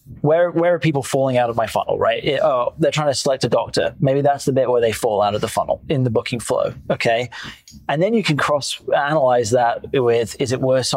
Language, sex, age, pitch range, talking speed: English, male, 20-39, 125-150 Hz, 240 wpm